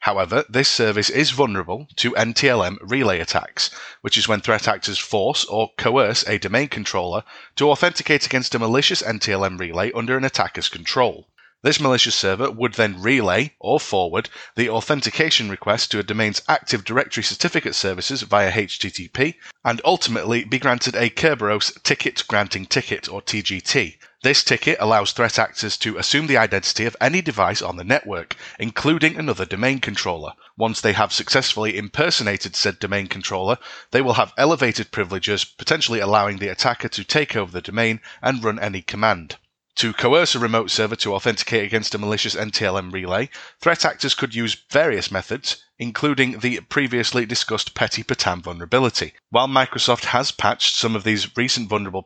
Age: 30-49